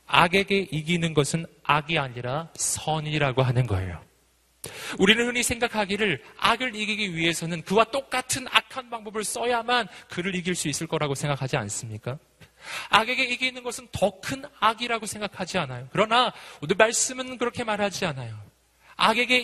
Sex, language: male, Korean